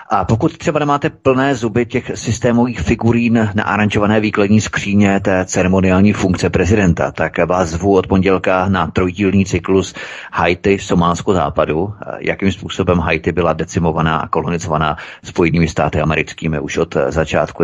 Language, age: Czech, 30-49